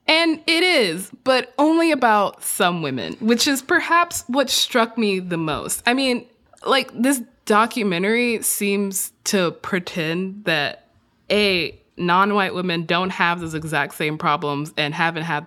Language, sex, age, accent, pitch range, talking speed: English, female, 20-39, American, 170-240 Hz, 145 wpm